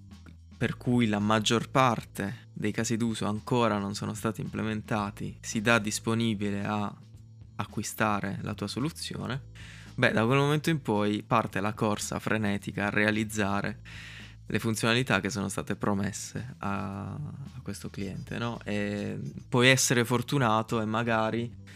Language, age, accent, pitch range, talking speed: Italian, 20-39, native, 100-115 Hz, 135 wpm